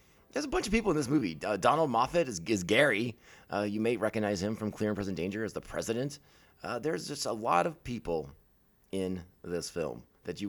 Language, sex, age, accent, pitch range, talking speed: English, male, 30-49, American, 95-130 Hz, 225 wpm